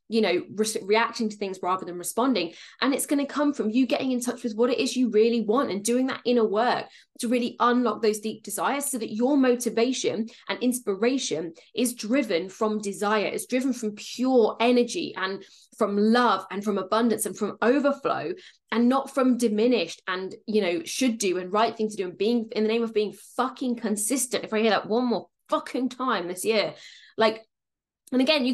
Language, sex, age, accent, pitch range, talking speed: English, female, 10-29, British, 215-270 Hz, 205 wpm